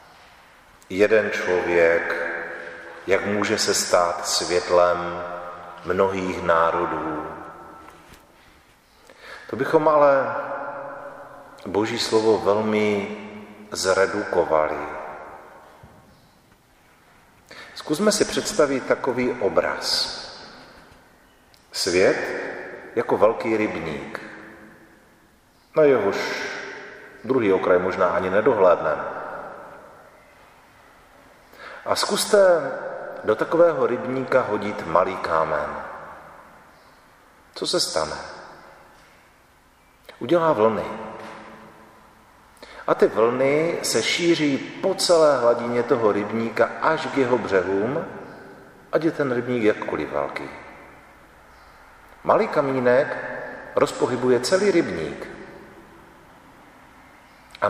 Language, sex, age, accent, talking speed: Czech, male, 40-59, native, 75 wpm